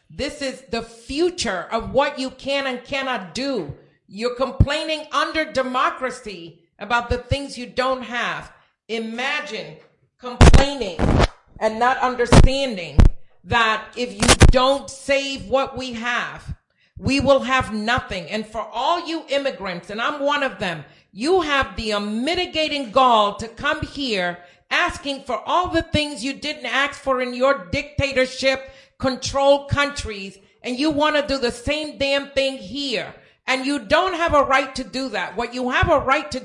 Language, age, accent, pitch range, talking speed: English, 50-69, American, 245-290 Hz, 155 wpm